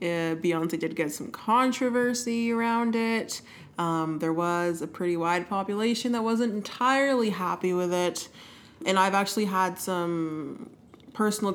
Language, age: English, 20-39